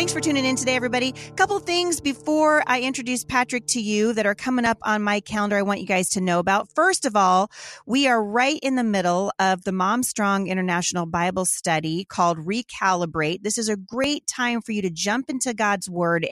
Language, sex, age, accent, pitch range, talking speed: English, female, 40-59, American, 190-245 Hz, 215 wpm